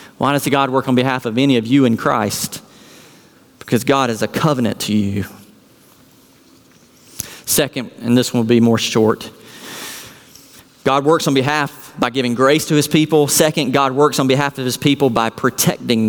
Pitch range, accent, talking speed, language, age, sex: 115-140 Hz, American, 170 wpm, English, 40-59, male